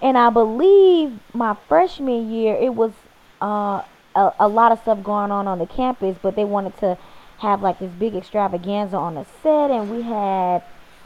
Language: English